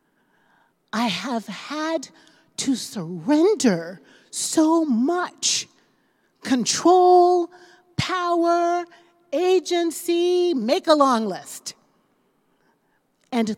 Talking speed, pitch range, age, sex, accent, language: 65 wpm, 230-335 Hz, 40-59, female, American, English